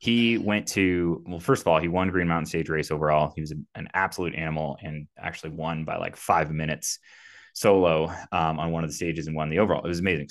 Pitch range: 80-90 Hz